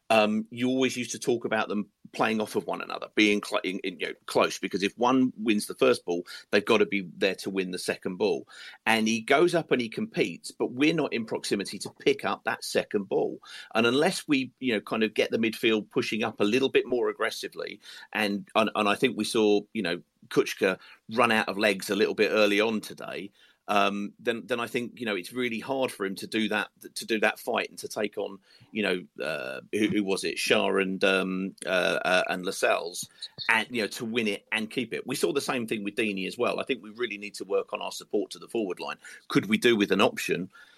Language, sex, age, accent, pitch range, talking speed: English, male, 40-59, British, 100-120 Hz, 245 wpm